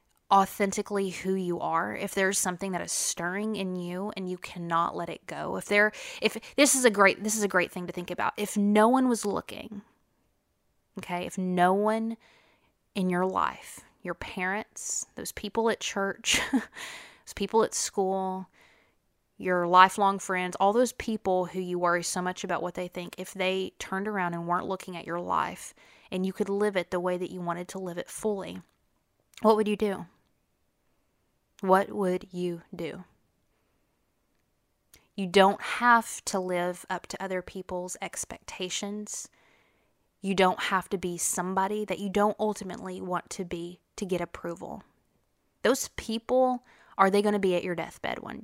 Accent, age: American, 20-39